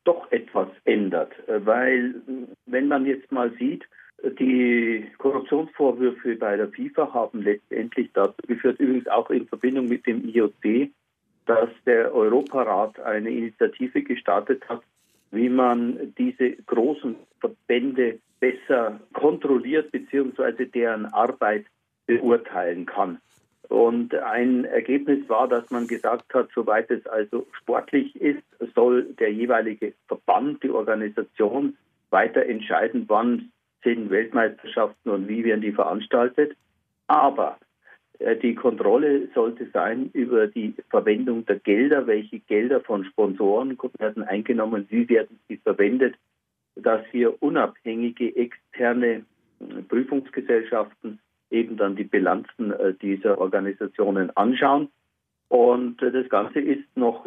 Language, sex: German, male